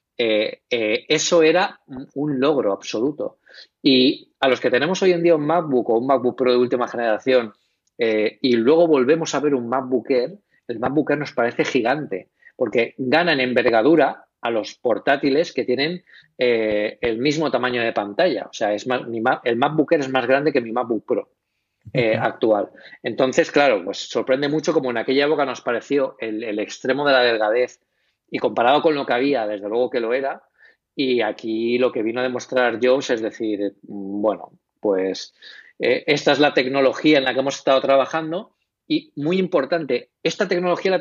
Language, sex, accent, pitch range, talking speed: English, male, Spanish, 120-155 Hz, 190 wpm